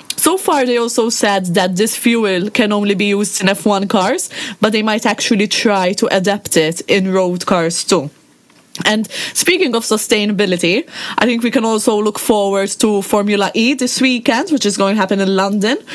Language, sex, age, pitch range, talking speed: English, female, 20-39, 195-240 Hz, 190 wpm